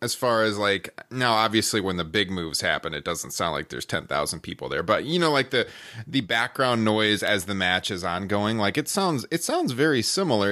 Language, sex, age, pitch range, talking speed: English, male, 30-49, 100-130 Hz, 220 wpm